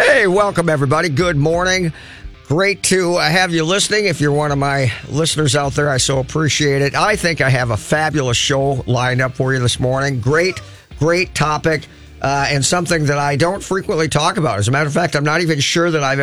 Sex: male